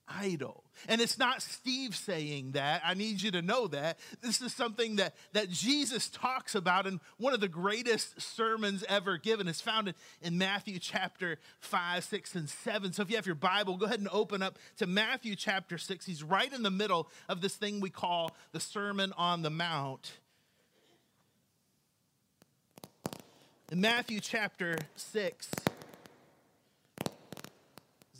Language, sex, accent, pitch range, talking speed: English, male, American, 170-220 Hz, 155 wpm